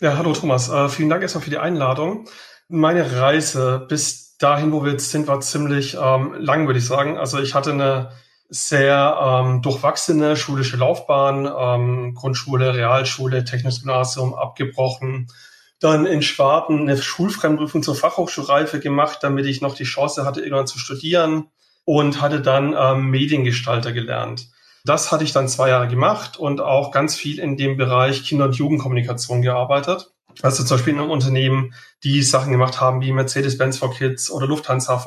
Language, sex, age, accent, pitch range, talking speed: German, male, 40-59, German, 130-155 Hz, 165 wpm